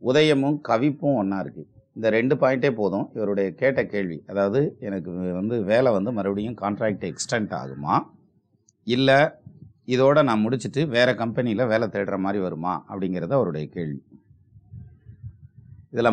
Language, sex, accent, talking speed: Tamil, male, native, 125 wpm